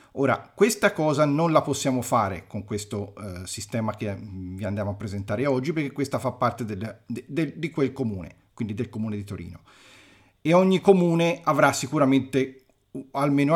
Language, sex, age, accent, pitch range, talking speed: Italian, male, 40-59, native, 110-165 Hz, 170 wpm